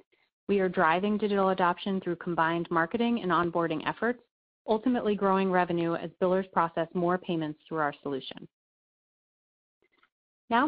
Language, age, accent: English, 30-49, American